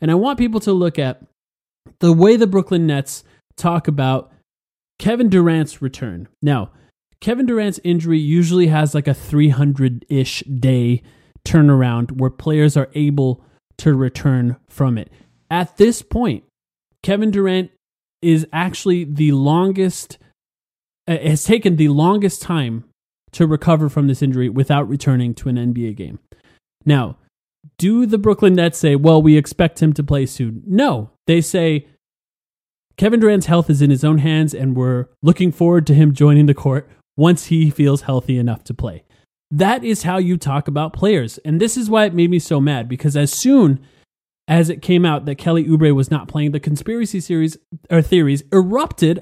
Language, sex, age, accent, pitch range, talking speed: English, male, 30-49, American, 135-175 Hz, 165 wpm